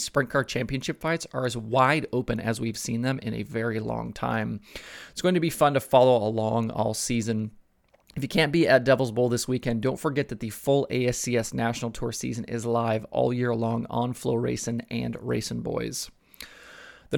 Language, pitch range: English, 115-130 Hz